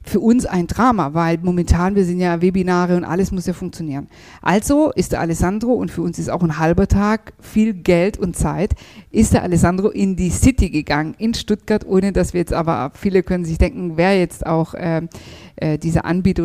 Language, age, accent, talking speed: German, 50-69, German, 200 wpm